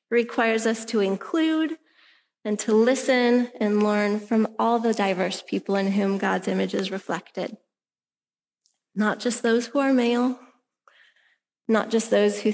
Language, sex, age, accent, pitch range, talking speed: English, female, 30-49, American, 205-250 Hz, 145 wpm